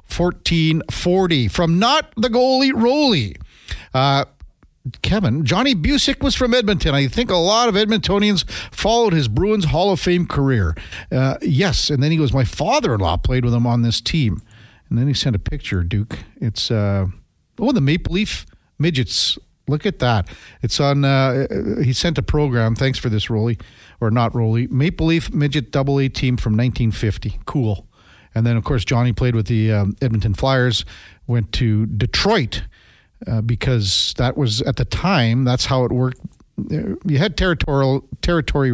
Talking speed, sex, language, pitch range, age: 170 wpm, male, English, 110-145 Hz, 50-69